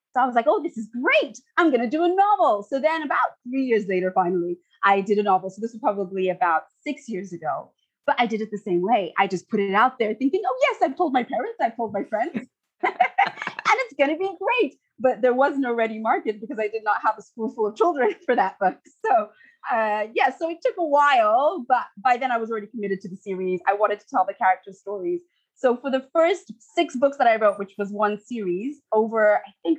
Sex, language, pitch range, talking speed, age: female, English, 200-280 Hz, 240 wpm, 30-49